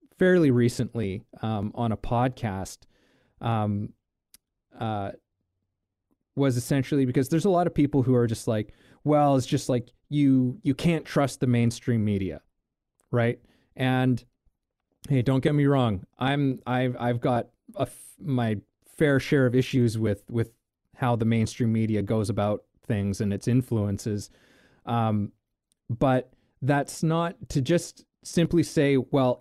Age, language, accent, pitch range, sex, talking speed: 20-39, English, American, 110-135 Hz, male, 145 wpm